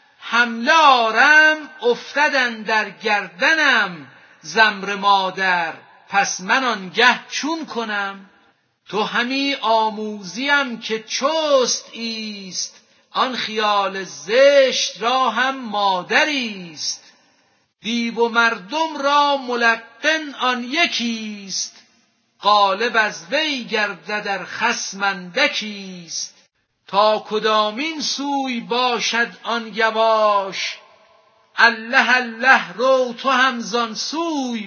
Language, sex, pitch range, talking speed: Persian, female, 200-260 Hz, 85 wpm